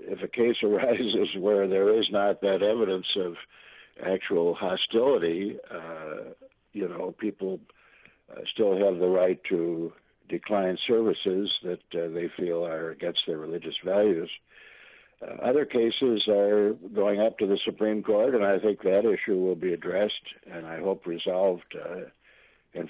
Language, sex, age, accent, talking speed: English, male, 60-79, American, 150 wpm